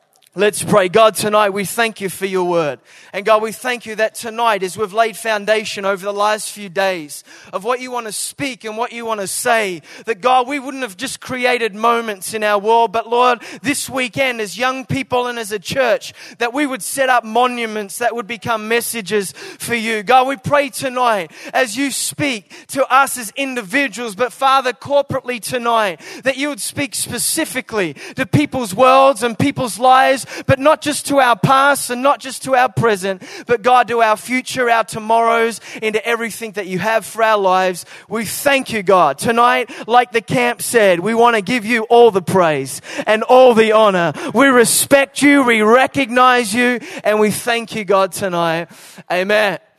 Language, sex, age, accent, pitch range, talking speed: English, male, 20-39, Australian, 210-255 Hz, 190 wpm